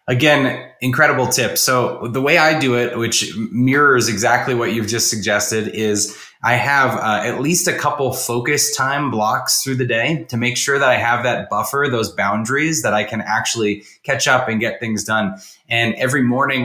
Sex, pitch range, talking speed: male, 110-135 Hz, 190 wpm